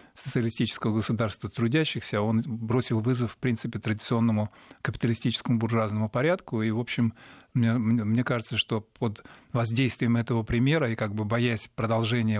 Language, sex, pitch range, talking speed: Russian, male, 110-130 Hz, 135 wpm